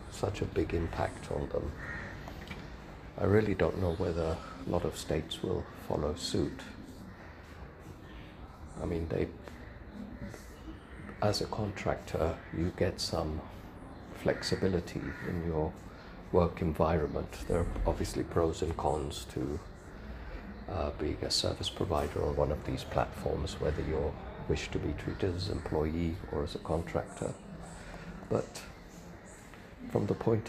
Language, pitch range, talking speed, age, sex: English, 80-95 Hz, 130 wpm, 50-69, male